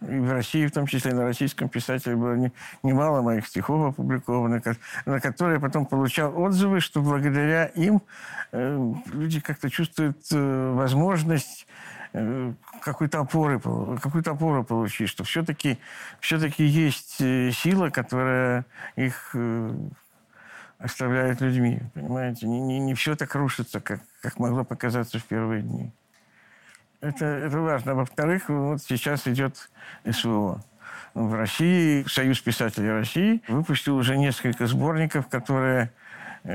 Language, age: Russian, 50-69